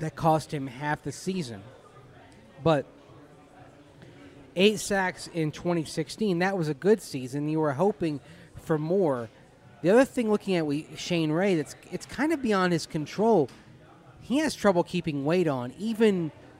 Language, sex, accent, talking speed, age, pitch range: English, male, American, 155 wpm, 30-49, 140-180 Hz